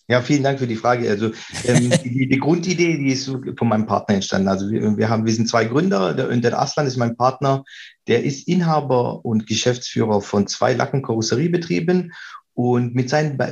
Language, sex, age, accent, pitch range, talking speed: German, male, 40-59, German, 115-140 Hz, 190 wpm